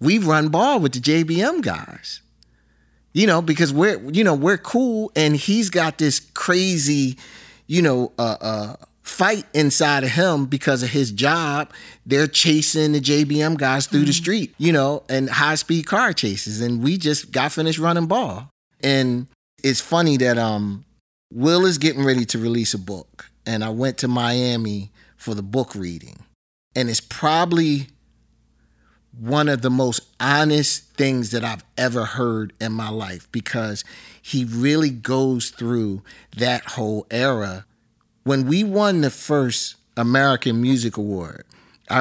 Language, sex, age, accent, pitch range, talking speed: English, male, 30-49, American, 115-150 Hz, 155 wpm